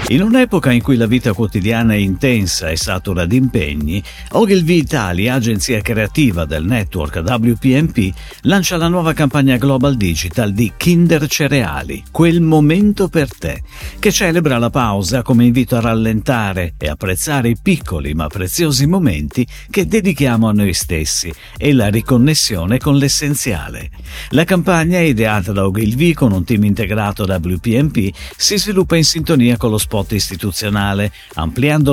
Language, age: Italian, 50-69